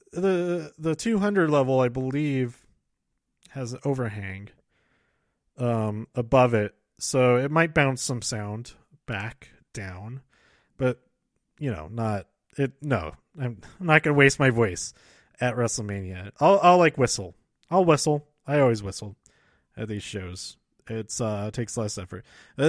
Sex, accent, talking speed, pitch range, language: male, American, 140 wpm, 120-155 Hz, English